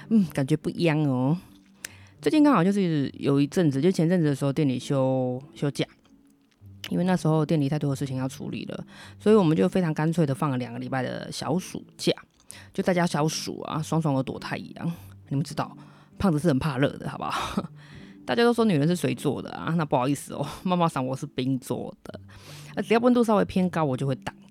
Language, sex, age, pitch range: Chinese, female, 20-39, 130-175 Hz